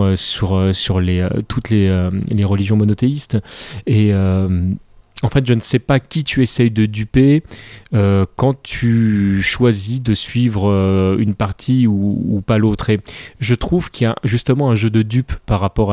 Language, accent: French, French